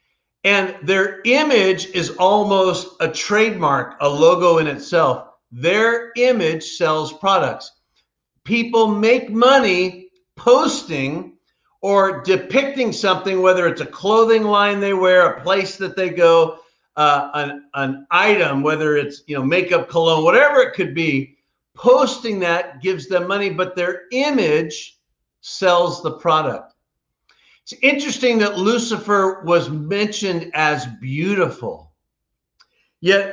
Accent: American